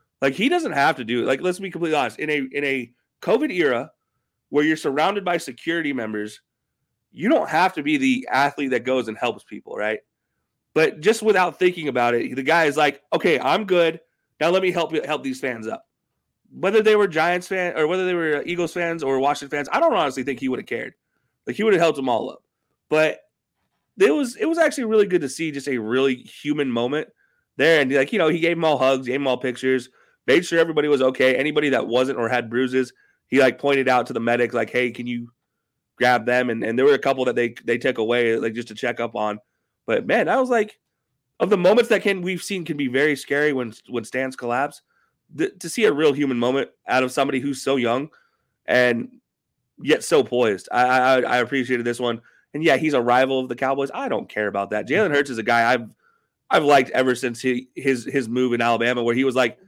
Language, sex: English, male